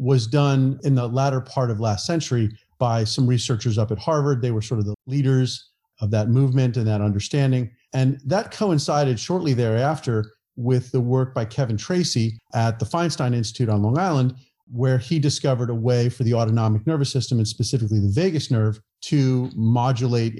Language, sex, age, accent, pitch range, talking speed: English, male, 40-59, American, 110-140 Hz, 180 wpm